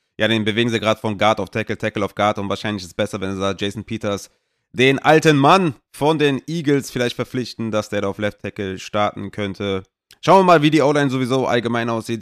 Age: 30-49